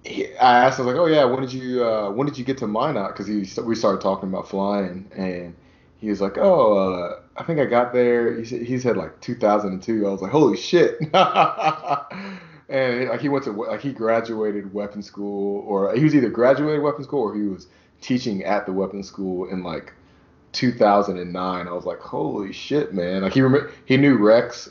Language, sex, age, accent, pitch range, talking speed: English, male, 20-39, American, 95-125 Hz, 210 wpm